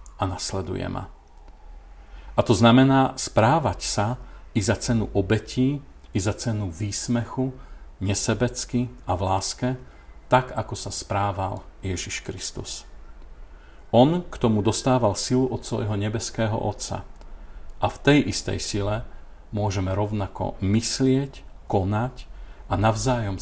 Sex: male